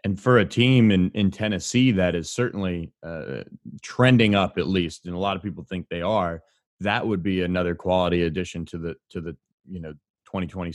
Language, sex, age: English, male, 30-49